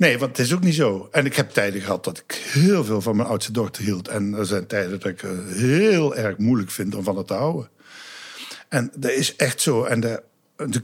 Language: Dutch